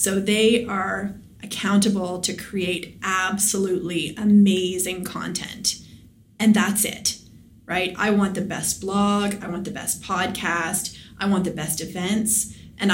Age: 30-49